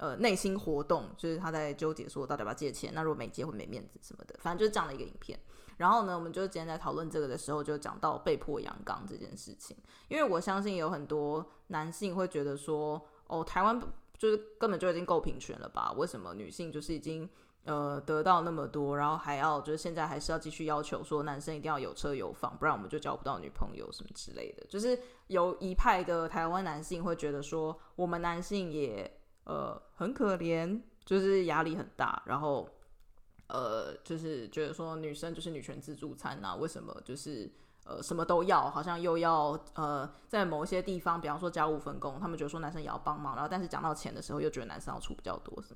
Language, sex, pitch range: Chinese, female, 150-185 Hz